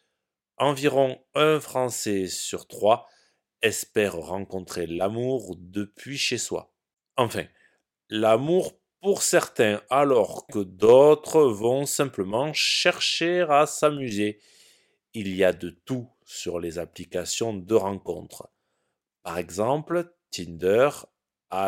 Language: French